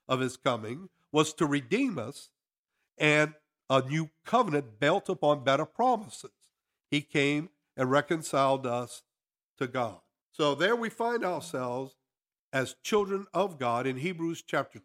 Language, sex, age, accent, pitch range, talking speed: English, male, 50-69, American, 130-165 Hz, 135 wpm